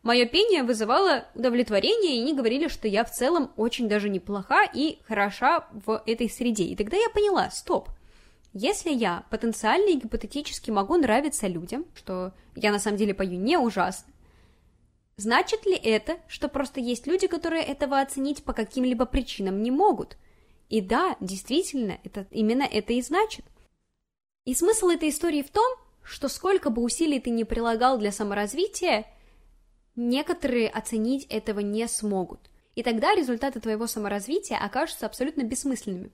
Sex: female